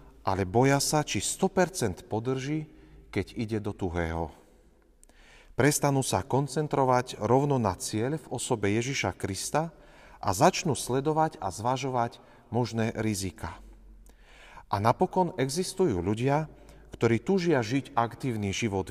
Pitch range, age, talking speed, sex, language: 105-135 Hz, 40-59, 115 wpm, male, Slovak